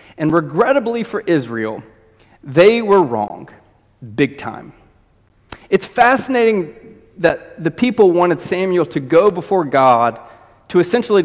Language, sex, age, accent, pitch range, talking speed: English, male, 30-49, American, 130-190 Hz, 115 wpm